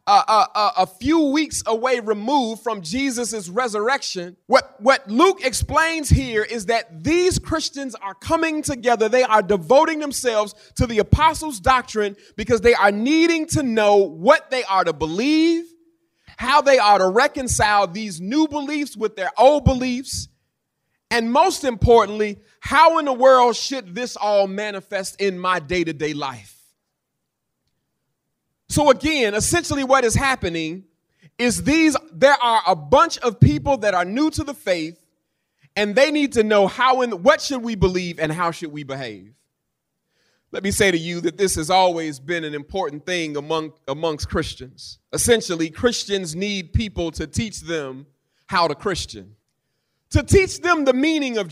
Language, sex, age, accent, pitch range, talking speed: English, male, 30-49, American, 180-270 Hz, 160 wpm